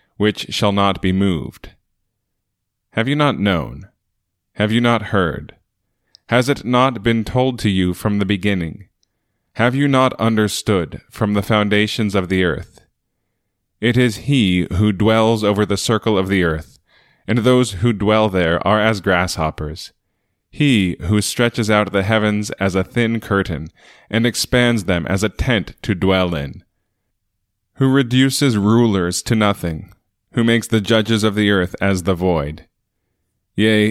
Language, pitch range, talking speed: English, 95-115 Hz, 155 wpm